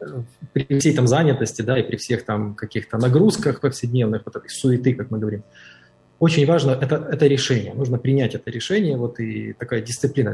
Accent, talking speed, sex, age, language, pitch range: native, 175 wpm, male, 20-39, Ukrainian, 115-140 Hz